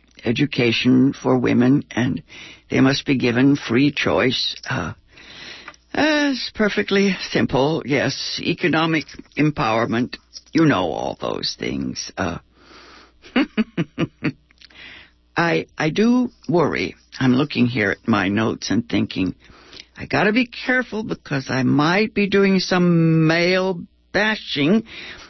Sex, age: female, 60-79